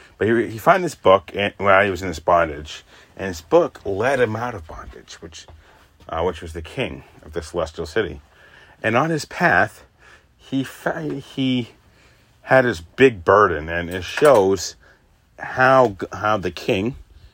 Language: English